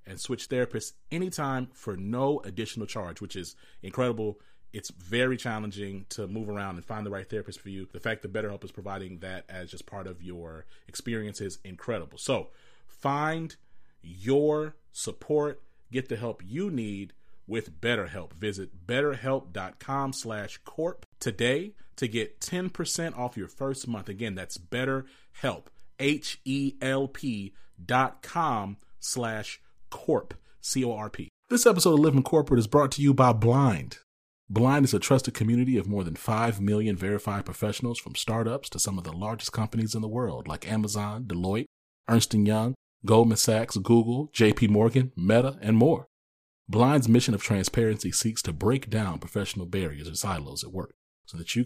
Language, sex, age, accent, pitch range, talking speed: English, male, 30-49, American, 95-130 Hz, 160 wpm